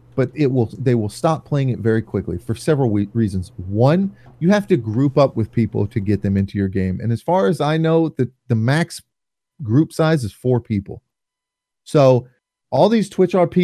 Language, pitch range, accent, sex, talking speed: English, 105-140 Hz, American, male, 200 wpm